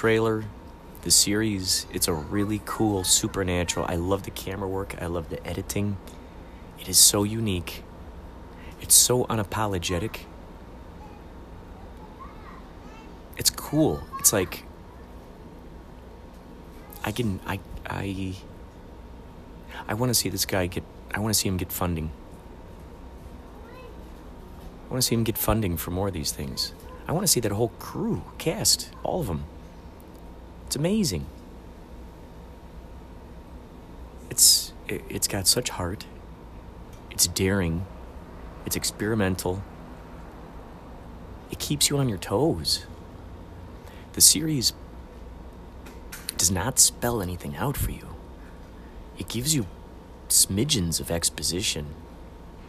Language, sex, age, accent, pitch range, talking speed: English, male, 30-49, American, 85-95 Hz, 115 wpm